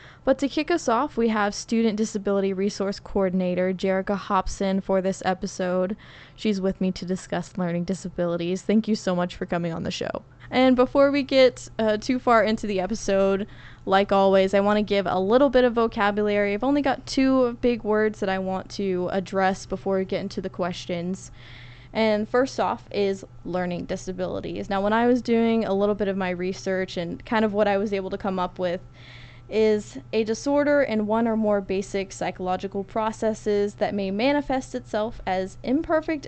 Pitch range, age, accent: 185-220 Hz, 20-39, American